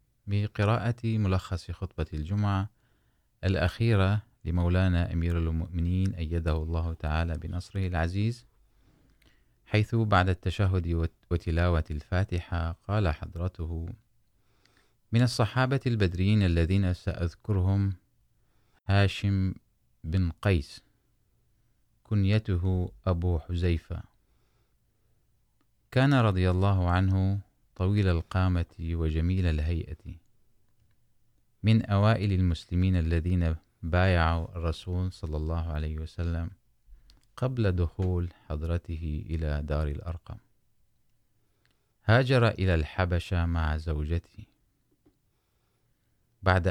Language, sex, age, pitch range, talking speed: Urdu, male, 30-49, 85-110 Hz, 80 wpm